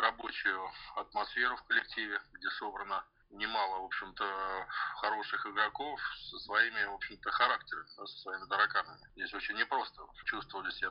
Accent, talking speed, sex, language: native, 130 wpm, male, Russian